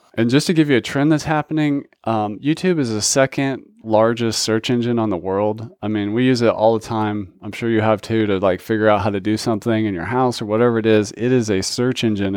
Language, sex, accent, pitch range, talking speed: English, male, American, 105-125 Hz, 255 wpm